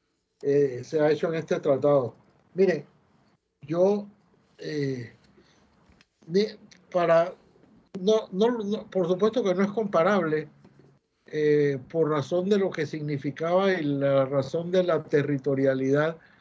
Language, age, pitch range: Spanish, 60-79, 150-200 Hz